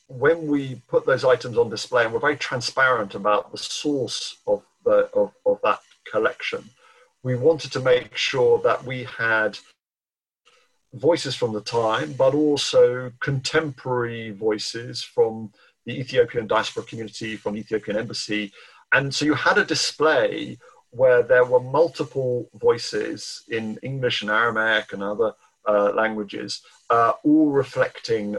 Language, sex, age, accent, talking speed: English, male, 50-69, British, 140 wpm